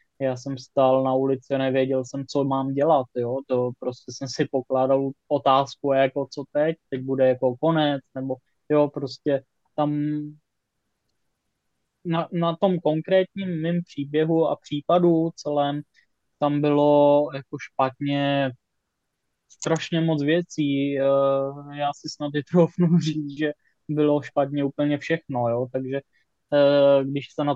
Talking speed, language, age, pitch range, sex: 130 wpm, Czech, 20-39, 135-150 Hz, male